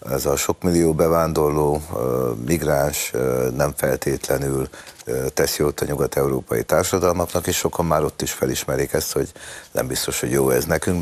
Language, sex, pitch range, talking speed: Hungarian, male, 75-100 Hz, 145 wpm